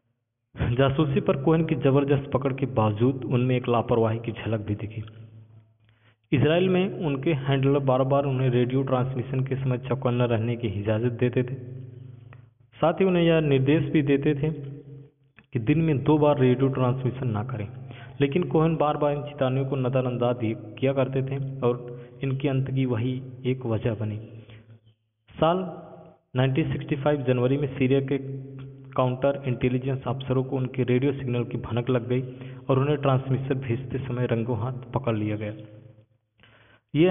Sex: male